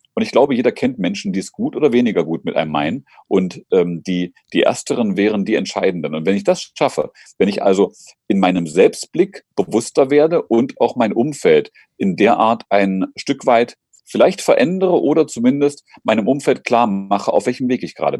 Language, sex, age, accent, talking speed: German, male, 40-59, German, 195 wpm